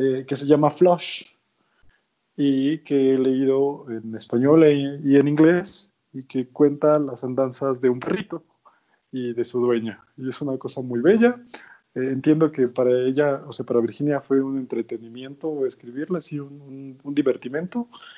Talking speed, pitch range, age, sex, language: 170 wpm, 130-175 Hz, 20-39, male, Spanish